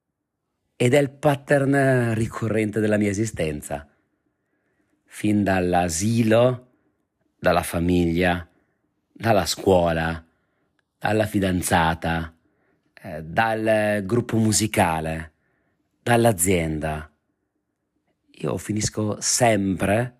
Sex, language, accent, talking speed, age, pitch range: male, Italian, native, 70 wpm, 40-59, 85-110 Hz